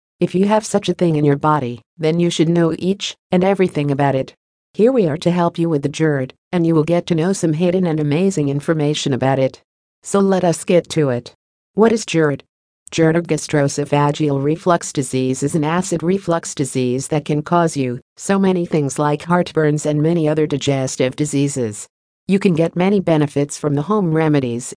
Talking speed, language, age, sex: 200 wpm, English, 50-69, female